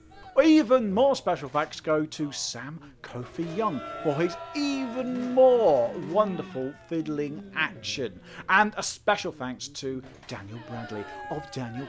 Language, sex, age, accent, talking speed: English, male, 40-59, British, 125 wpm